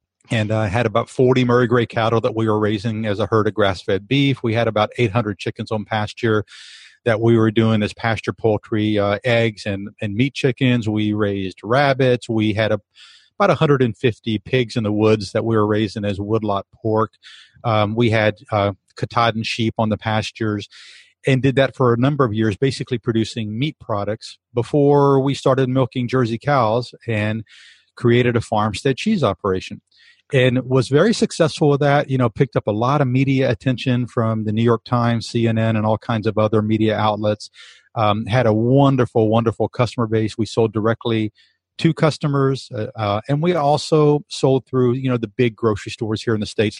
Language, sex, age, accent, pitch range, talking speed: English, male, 40-59, American, 110-130 Hz, 190 wpm